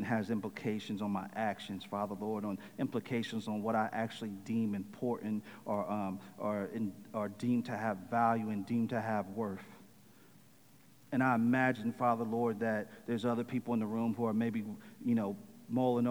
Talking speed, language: 175 wpm, English